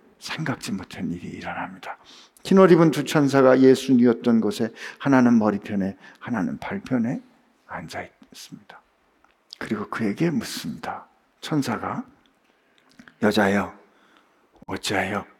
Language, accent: Korean, native